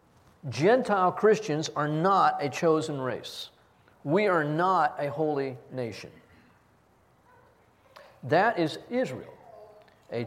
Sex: male